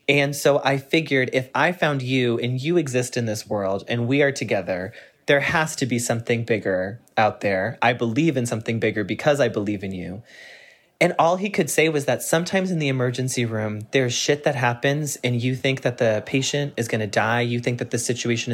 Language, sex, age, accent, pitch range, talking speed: English, male, 30-49, American, 120-145 Hz, 215 wpm